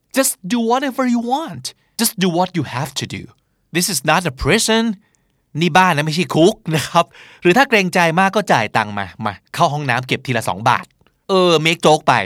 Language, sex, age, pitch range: Thai, male, 20-39, 130-180 Hz